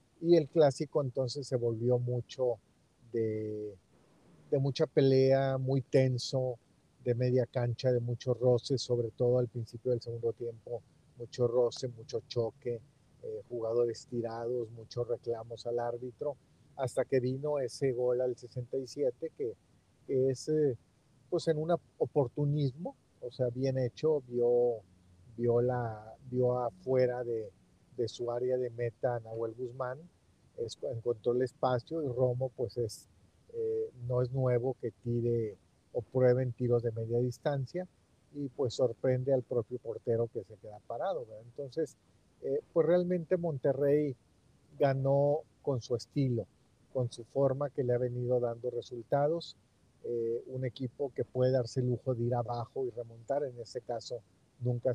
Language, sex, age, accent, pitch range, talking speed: Spanish, male, 40-59, Mexican, 120-135 Hz, 145 wpm